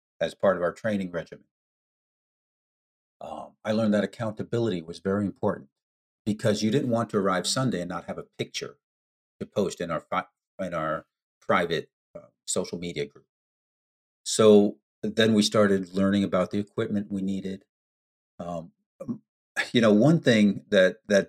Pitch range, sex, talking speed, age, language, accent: 95-115 Hz, male, 150 wpm, 50-69, English, American